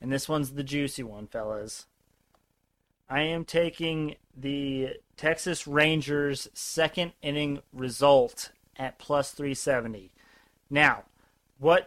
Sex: male